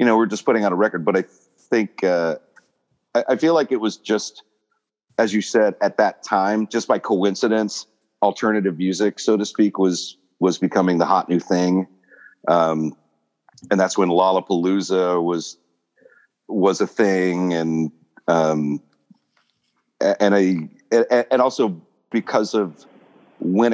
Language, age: English, 40-59